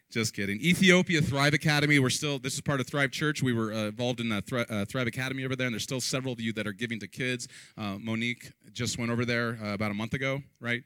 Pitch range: 110-140 Hz